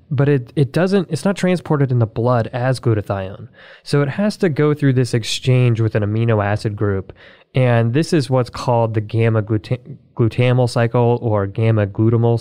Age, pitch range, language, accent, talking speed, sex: 20-39, 115-135 Hz, English, American, 185 wpm, male